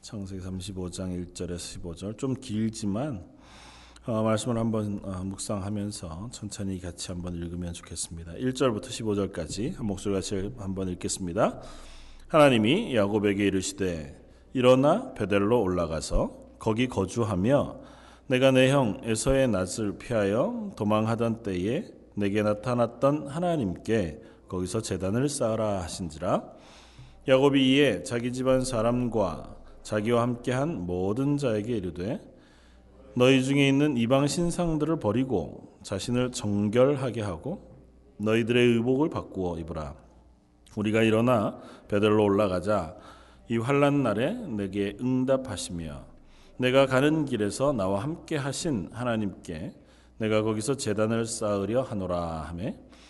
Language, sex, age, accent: Korean, male, 40-59, native